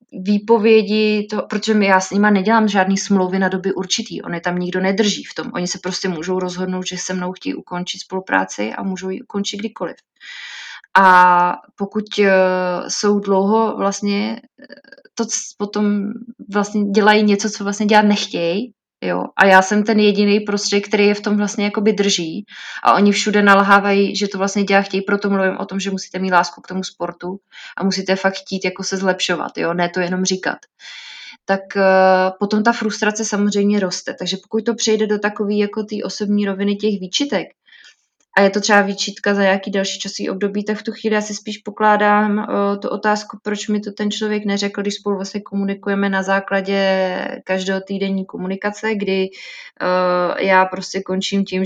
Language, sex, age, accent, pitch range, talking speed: Czech, female, 20-39, native, 190-210 Hz, 180 wpm